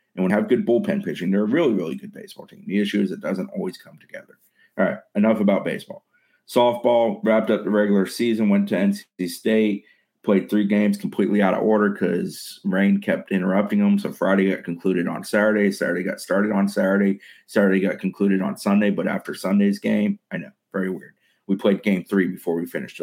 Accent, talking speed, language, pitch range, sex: American, 205 wpm, English, 95-110 Hz, male